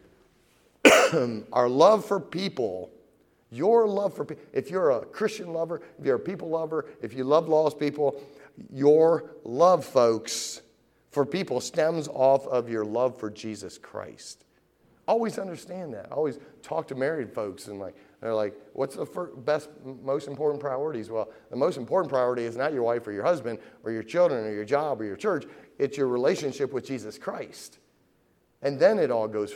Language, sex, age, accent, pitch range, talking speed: English, male, 40-59, American, 110-140 Hz, 175 wpm